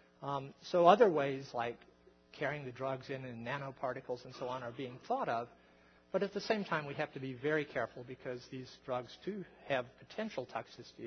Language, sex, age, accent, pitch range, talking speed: English, male, 50-69, American, 115-155 Hz, 195 wpm